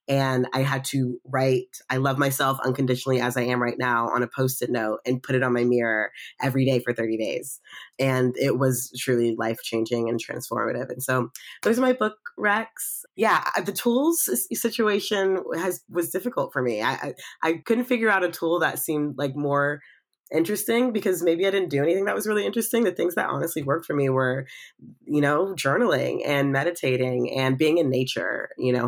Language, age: English, 20-39